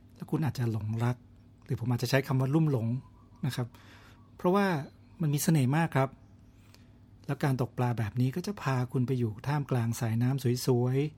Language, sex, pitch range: Thai, male, 115-150 Hz